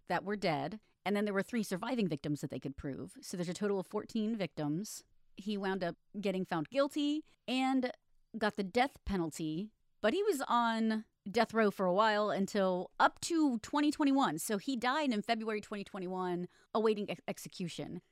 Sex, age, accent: female, 30-49, American